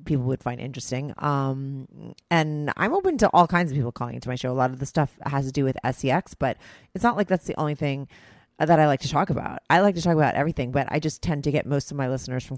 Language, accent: English, American